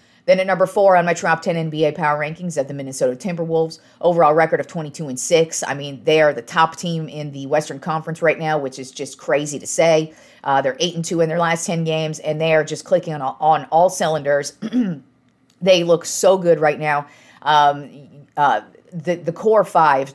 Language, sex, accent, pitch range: English, female, American, 145-170 Hz